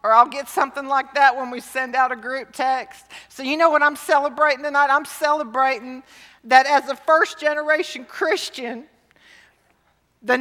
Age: 40-59